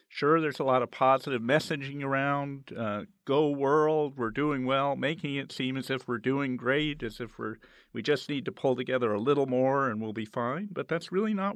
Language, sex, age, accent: English, male, 50-69, American